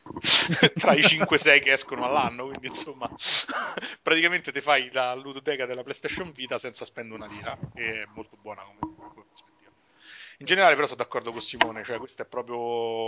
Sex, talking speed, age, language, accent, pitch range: male, 170 wpm, 30-49, Italian, native, 105-125 Hz